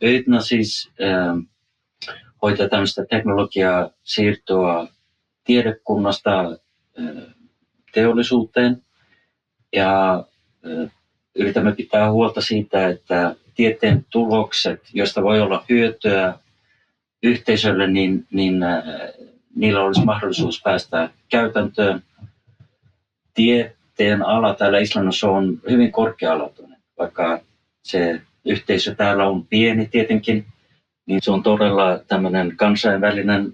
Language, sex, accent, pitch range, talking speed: Finnish, male, native, 95-110 Hz, 90 wpm